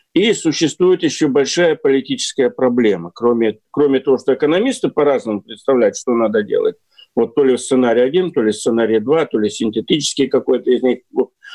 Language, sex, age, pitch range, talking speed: Russian, male, 50-69, 120-180 Hz, 160 wpm